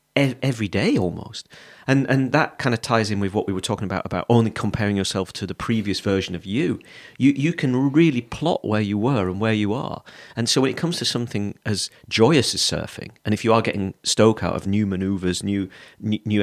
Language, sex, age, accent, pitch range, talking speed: English, male, 40-59, British, 100-130 Hz, 225 wpm